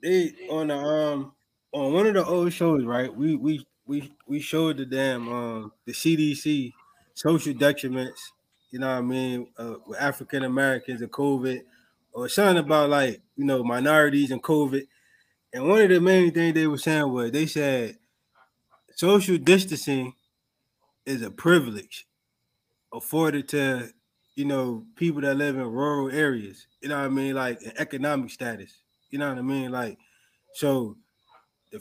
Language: English